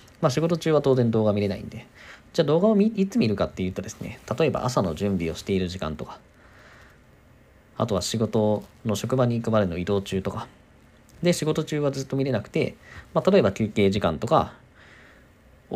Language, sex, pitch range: Japanese, male, 100-165 Hz